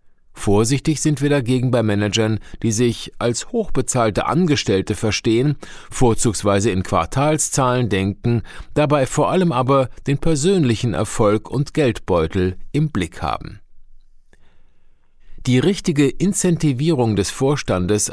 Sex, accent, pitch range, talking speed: male, German, 105-145 Hz, 110 wpm